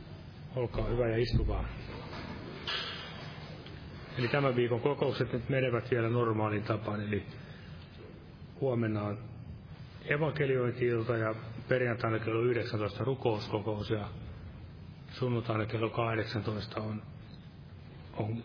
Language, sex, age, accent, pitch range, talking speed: Finnish, male, 30-49, native, 105-125 Hz, 95 wpm